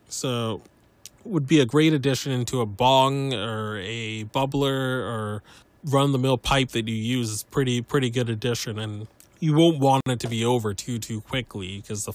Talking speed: 185 wpm